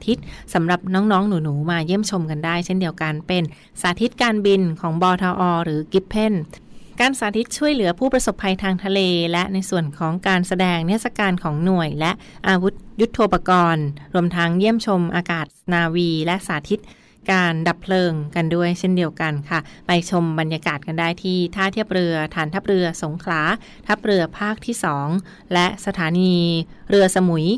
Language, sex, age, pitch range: Thai, female, 20-39, 170-200 Hz